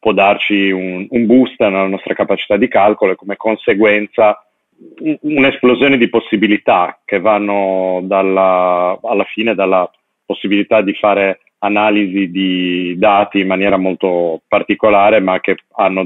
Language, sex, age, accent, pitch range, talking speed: Italian, male, 40-59, native, 95-110 Hz, 135 wpm